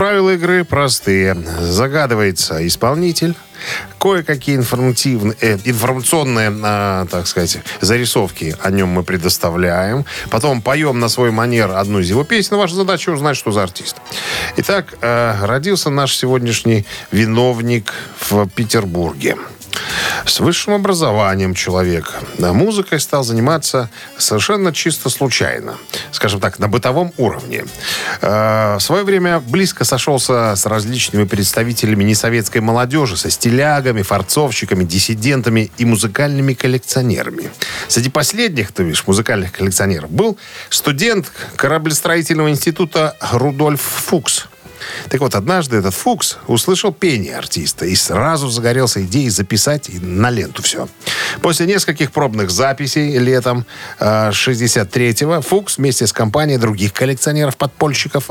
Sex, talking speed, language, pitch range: male, 110 wpm, Russian, 105-145 Hz